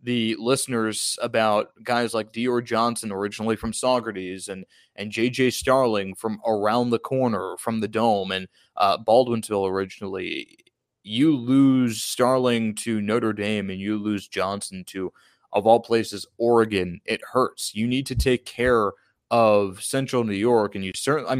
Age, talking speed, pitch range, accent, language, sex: 20-39, 150 wpm, 115-155 Hz, American, English, male